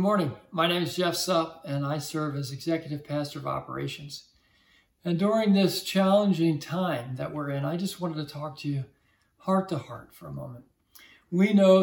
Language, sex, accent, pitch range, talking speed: English, male, American, 145-175 Hz, 195 wpm